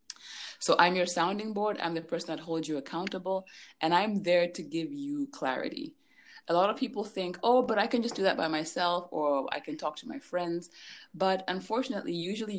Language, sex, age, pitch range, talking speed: English, female, 20-39, 150-200 Hz, 205 wpm